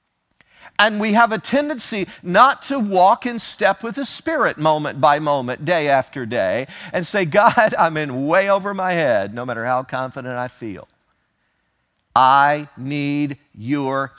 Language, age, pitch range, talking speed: English, 50-69, 135-220 Hz, 155 wpm